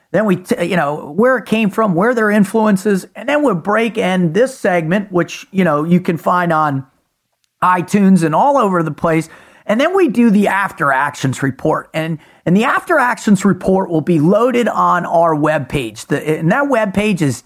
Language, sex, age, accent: English, male, 40-59, American